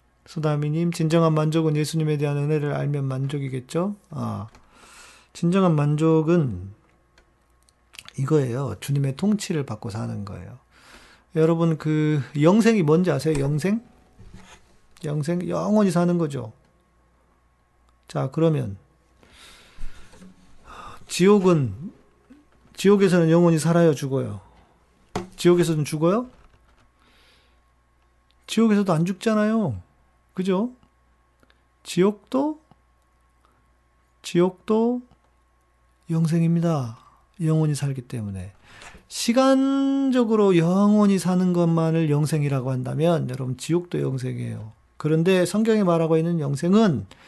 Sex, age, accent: male, 40-59, native